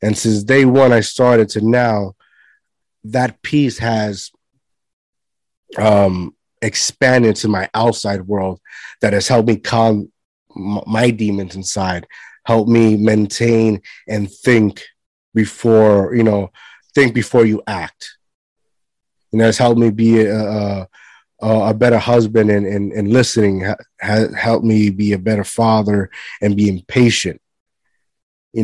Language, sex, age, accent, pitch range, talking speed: English, male, 30-49, American, 105-120 Hz, 130 wpm